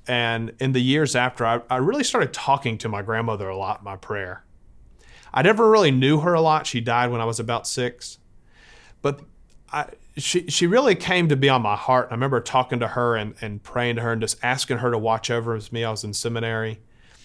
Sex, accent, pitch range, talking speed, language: male, American, 110-130 Hz, 230 wpm, English